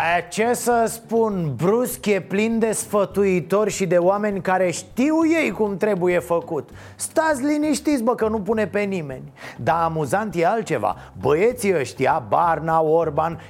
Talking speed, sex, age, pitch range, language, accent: 150 wpm, male, 30-49, 155-205 Hz, Romanian, native